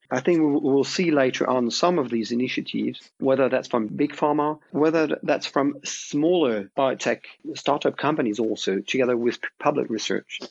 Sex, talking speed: male, 160 wpm